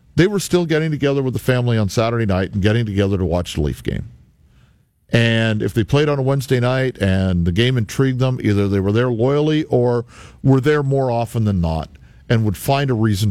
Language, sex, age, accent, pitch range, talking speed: English, male, 50-69, American, 95-130 Hz, 220 wpm